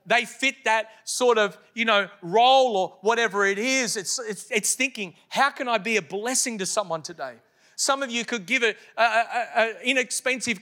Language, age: English, 40-59